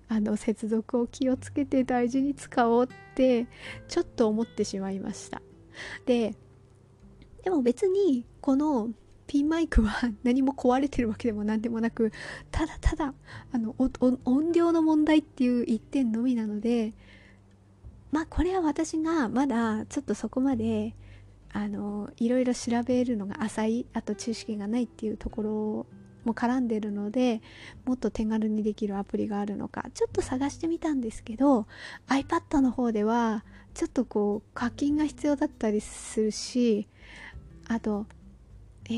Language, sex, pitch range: Japanese, female, 210-260 Hz